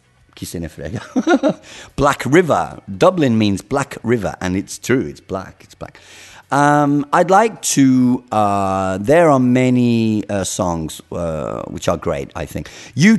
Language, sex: English, male